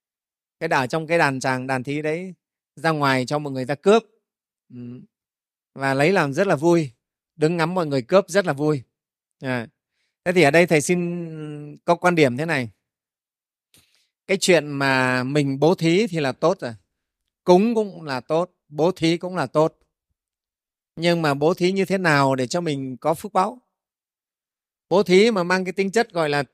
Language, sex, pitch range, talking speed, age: Vietnamese, male, 140-185 Hz, 190 wpm, 30-49